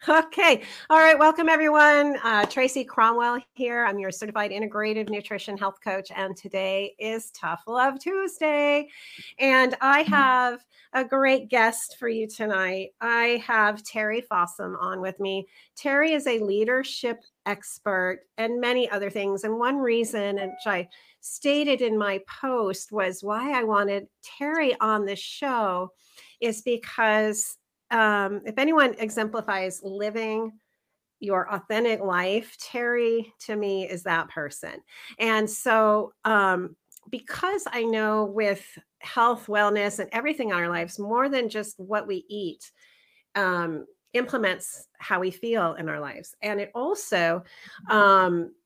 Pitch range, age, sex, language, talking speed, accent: 200-250 Hz, 40-59, female, English, 140 wpm, American